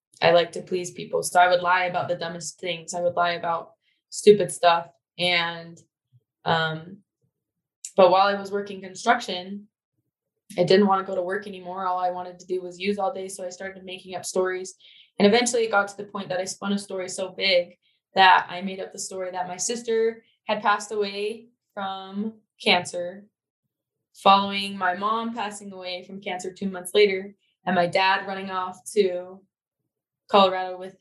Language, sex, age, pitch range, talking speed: English, female, 20-39, 175-200 Hz, 185 wpm